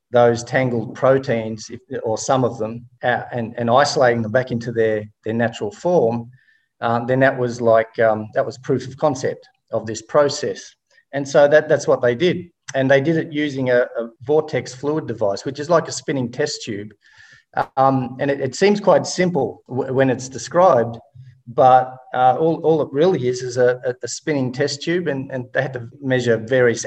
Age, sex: 40-59, male